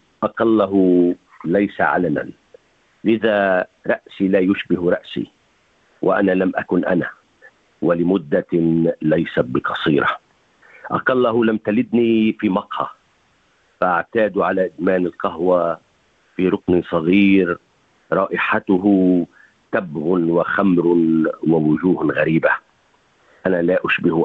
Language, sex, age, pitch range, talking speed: Arabic, male, 50-69, 85-105 Hz, 85 wpm